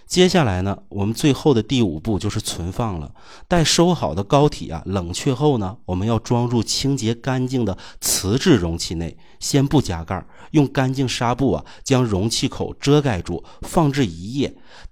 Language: Chinese